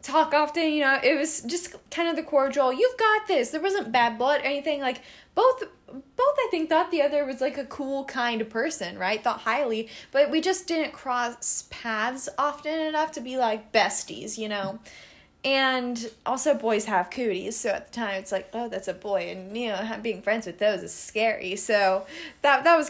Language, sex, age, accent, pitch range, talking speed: English, female, 10-29, American, 215-295 Hz, 210 wpm